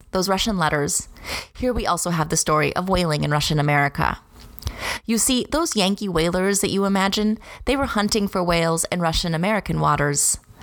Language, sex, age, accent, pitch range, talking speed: English, female, 30-49, American, 160-200 Hz, 175 wpm